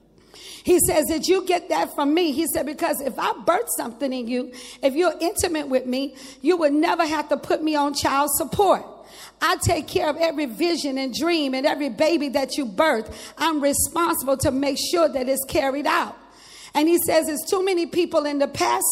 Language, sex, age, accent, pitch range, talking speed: English, female, 40-59, American, 285-340 Hz, 205 wpm